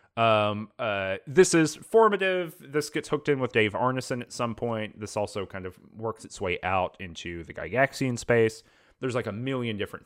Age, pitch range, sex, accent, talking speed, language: 30-49, 100-130 Hz, male, American, 190 wpm, English